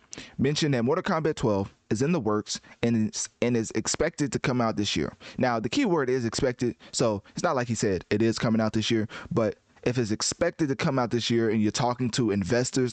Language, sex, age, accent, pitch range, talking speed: English, male, 20-39, American, 105-125 Hz, 230 wpm